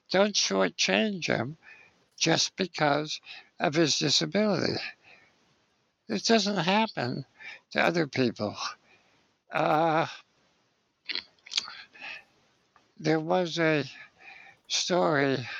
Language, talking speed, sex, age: English, 75 wpm, male, 60-79